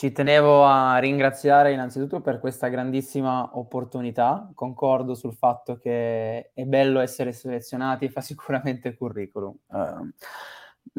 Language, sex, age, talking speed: Italian, male, 20-39, 110 wpm